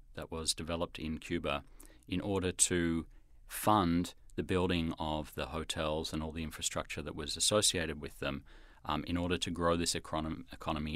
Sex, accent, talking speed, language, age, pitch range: male, Australian, 165 wpm, English, 40-59, 80-95 Hz